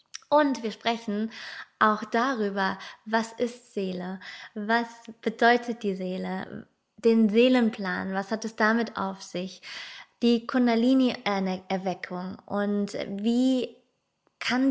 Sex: female